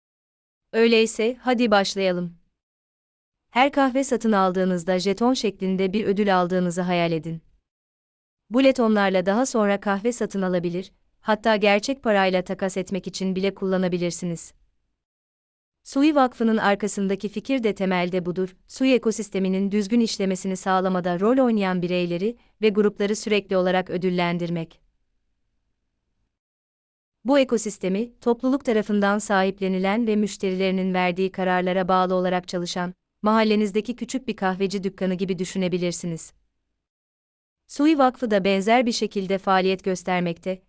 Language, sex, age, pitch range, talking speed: Turkish, female, 30-49, 180-215 Hz, 110 wpm